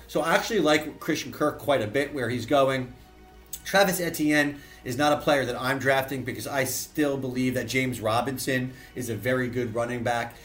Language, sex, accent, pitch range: English, male, American, 125-150 Hz